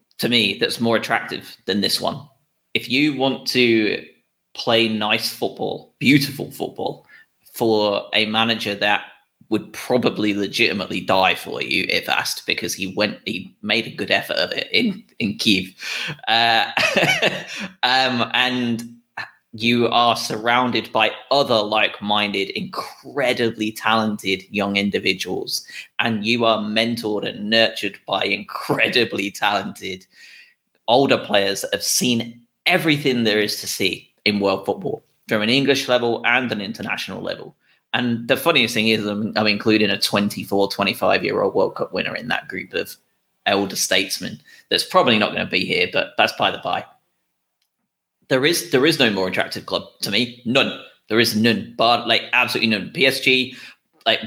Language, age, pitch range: English, 20-39, 105-120 Hz